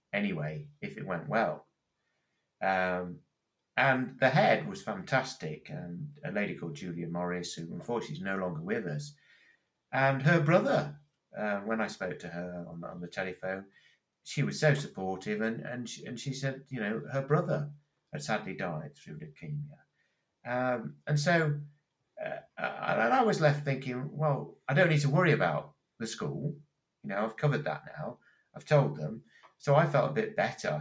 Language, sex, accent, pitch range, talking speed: English, male, British, 115-150 Hz, 170 wpm